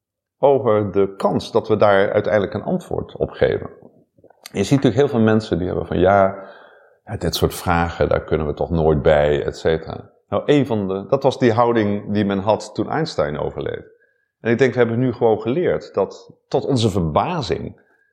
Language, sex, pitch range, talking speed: Dutch, male, 95-130 Hz, 180 wpm